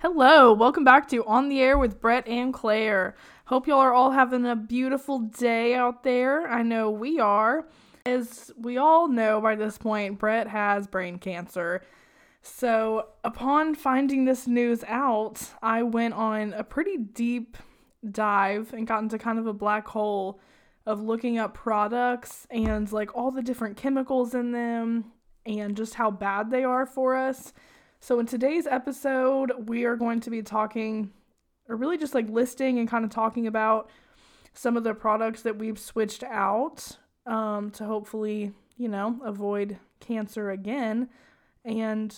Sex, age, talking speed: female, 10-29, 160 wpm